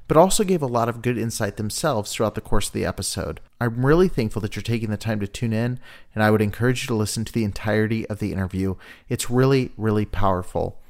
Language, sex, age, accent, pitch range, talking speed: English, male, 30-49, American, 105-125 Hz, 235 wpm